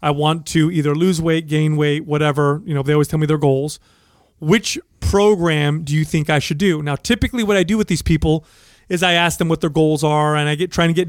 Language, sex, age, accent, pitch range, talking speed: English, male, 30-49, American, 150-180 Hz, 255 wpm